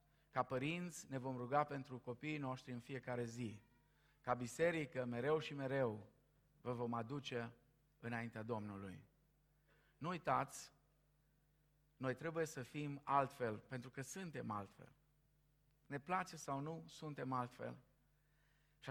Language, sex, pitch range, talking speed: Romanian, male, 115-150 Hz, 125 wpm